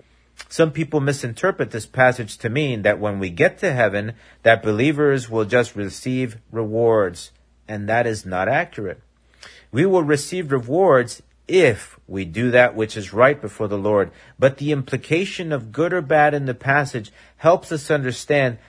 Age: 50-69